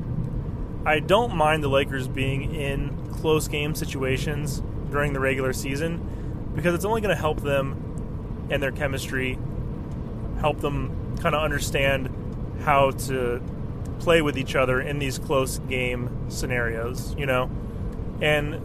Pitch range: 125-150 Hz